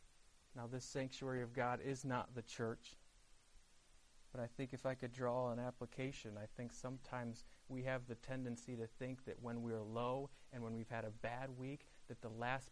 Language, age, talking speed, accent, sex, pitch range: English, 30-49, 200 wpm, American, male, 110-130 Hz